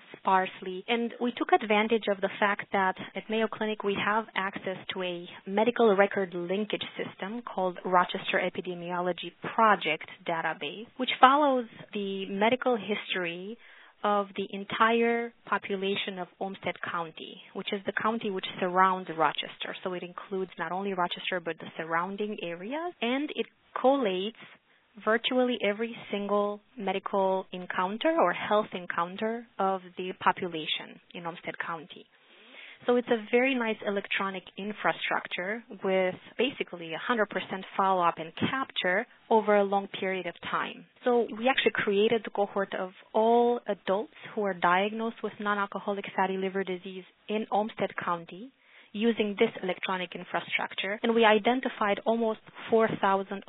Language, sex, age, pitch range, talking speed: English, female, 20-39, 185-225 Hz, 135 wpm